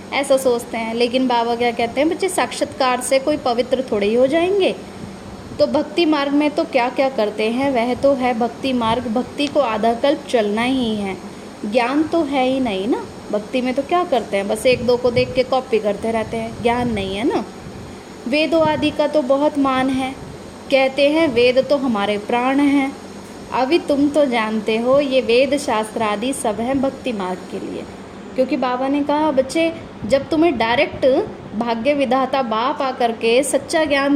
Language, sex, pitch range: Hindi, female, 230-285 Hz